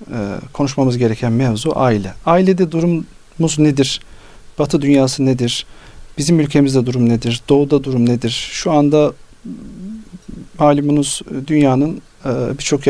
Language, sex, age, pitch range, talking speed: Turkish, male, 40-59, 120-160 Hz, 100 wpm